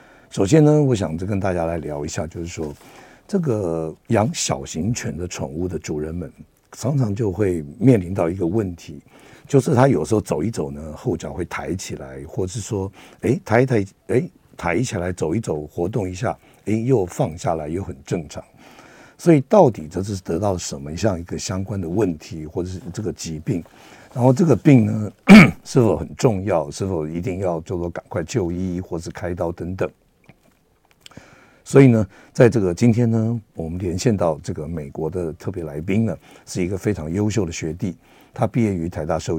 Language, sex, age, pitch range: Chinese, male, 60-79, 85-115 Hz